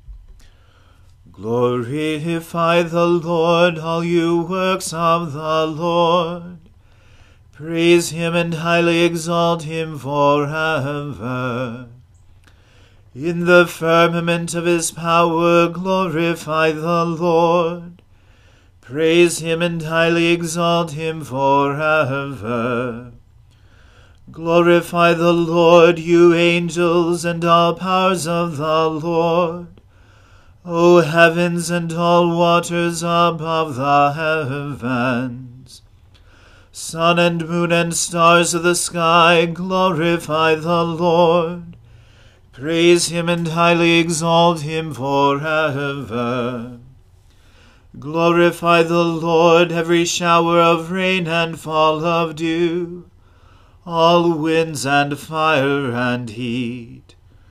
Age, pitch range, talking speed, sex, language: 40-59, 125-170 Hz, 90 wpm, male, English